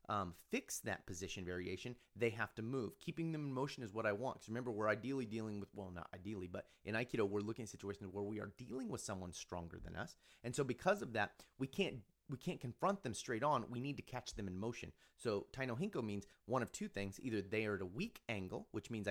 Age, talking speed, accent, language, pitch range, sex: 30-49, 240 wpm, American, English, 95-125 Hz, male